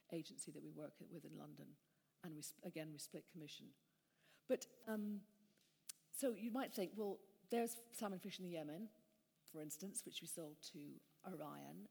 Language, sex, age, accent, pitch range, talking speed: English, female, 50-69, British, 150-200 Hz, 170 wpm